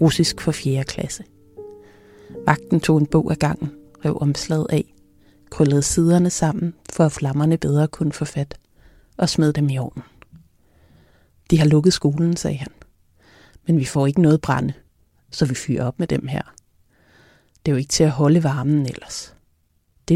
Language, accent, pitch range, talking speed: Danish, native, 130-160 Hz, 170 wpm